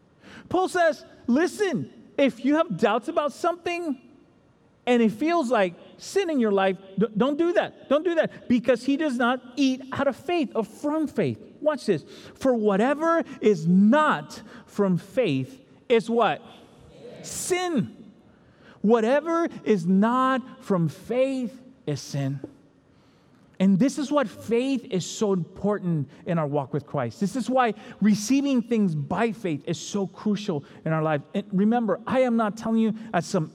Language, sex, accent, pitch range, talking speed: English, male, American, 180-255 Hz, 155 wpm